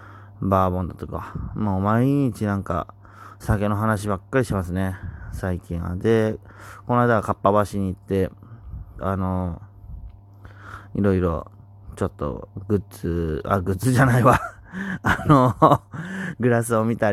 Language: Japanese